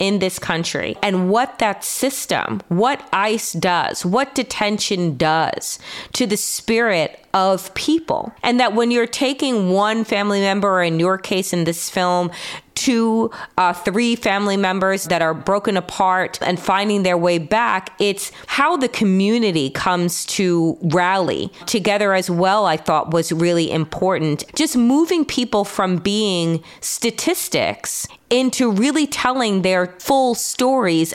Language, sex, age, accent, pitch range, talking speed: English, female, 30-49, American, 180-230 Hz, 140 wpm